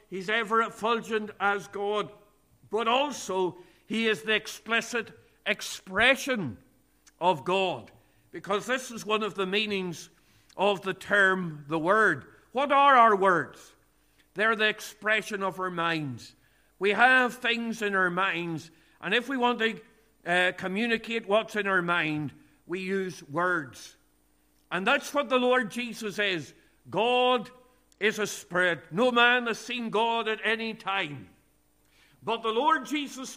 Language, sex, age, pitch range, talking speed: English, male, 50-69, 185-230 Hz, 140 wpm